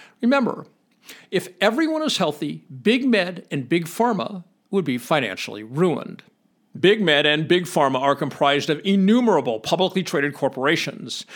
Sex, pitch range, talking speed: male, 155-225 Hz, 135 wpm